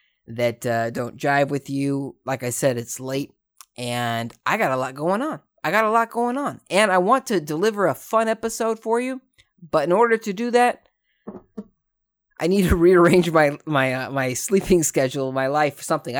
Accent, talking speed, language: American, 195 wpm, English